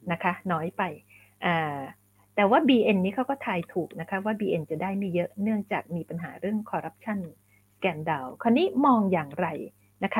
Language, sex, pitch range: Thai, female, 160-245 Hz